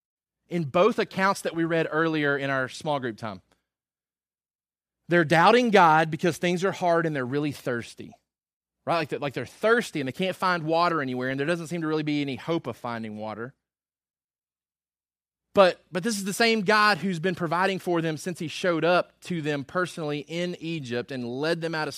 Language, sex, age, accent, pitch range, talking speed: English, male, 30-49, American, 140-180 Hz, 195 wpm